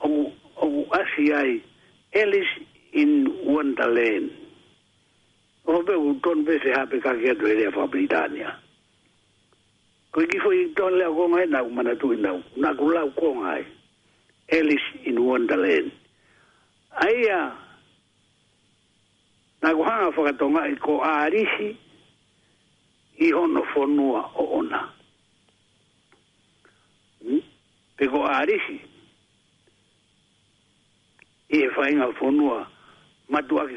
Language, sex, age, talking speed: English, male, 60-79, 50 wpm